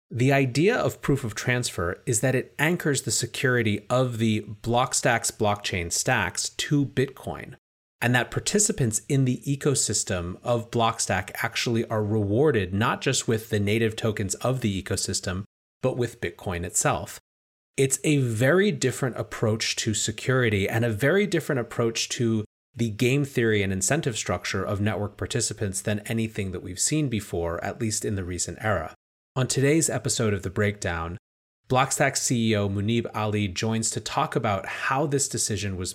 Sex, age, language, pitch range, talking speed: male, 30-49, English, 105-130 Hz, 160 wpm